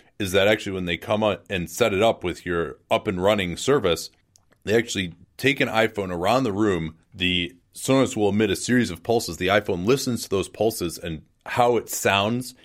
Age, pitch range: 30-49, 90-110 Hz